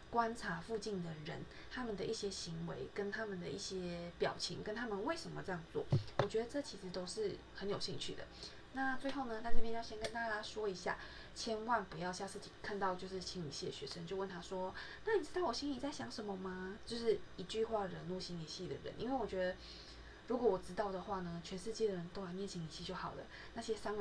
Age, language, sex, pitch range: 20-39, Chinese, female, 180-225 Hz